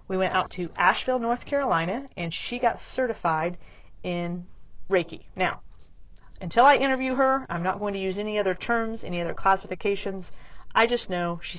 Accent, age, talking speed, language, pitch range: American, 40-59, 170 wpm, English, 170-225 Hz